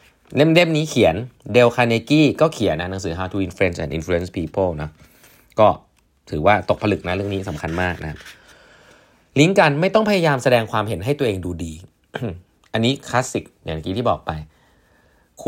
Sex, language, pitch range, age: male, Thai, 90-125 Hz, 20-39